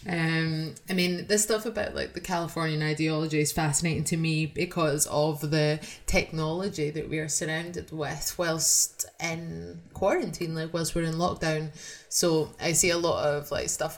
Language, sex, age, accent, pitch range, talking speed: English, female, 20-39, British, 150-175 Hz, 165 wpm